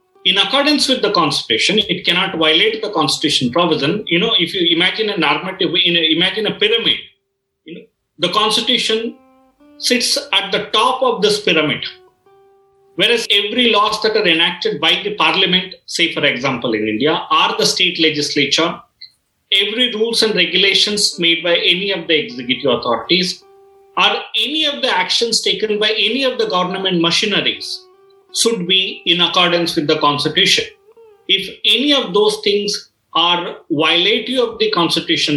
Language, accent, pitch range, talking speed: English, Indian, 175-265 Hz, 155 wpm